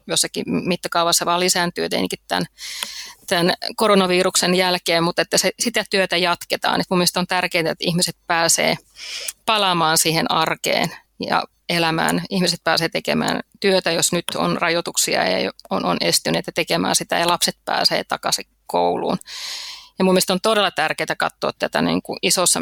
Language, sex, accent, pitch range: Finnish, female, native, 170-190 Hz